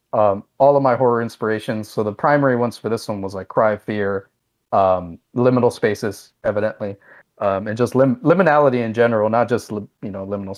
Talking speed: 185 wpm